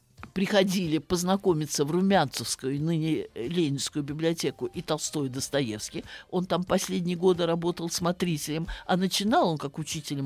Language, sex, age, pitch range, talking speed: Russian, male, 50-69, 150-195 Hz, 130 wpm